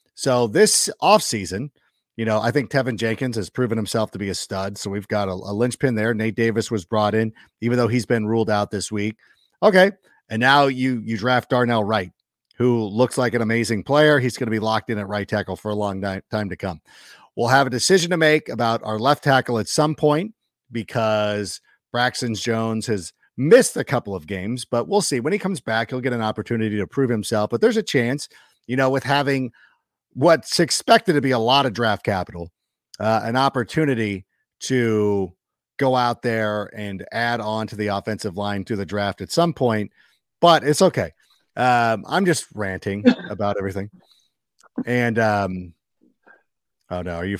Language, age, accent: English, 50-69, American